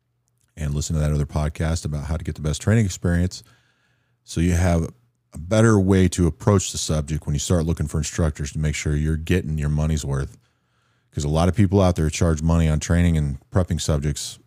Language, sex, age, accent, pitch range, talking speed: English, male, 40-59, American, 75-95 Hz, 215 wpm